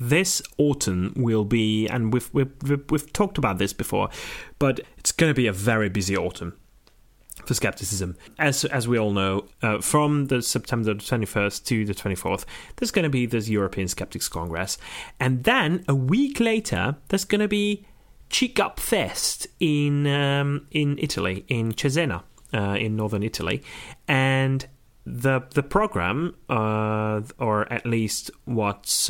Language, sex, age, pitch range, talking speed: English, male, 30-49, 110-150 Hz, 160 wpm